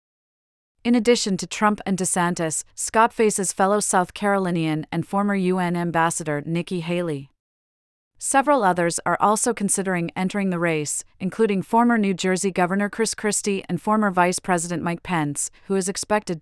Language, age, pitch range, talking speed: English, 40-59, 170-205 Hz, 150 wpm